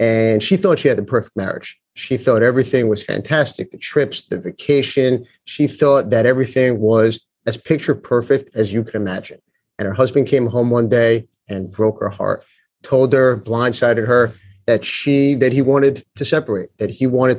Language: English